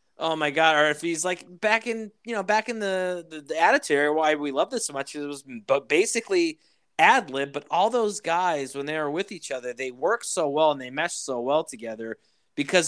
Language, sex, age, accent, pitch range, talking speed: English, male, 20-39, American, 130-165 Hz, 235 wpm